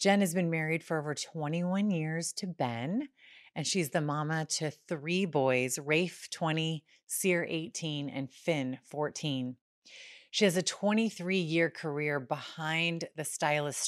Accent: American